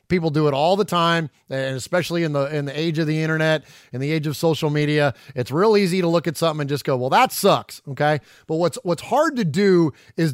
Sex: male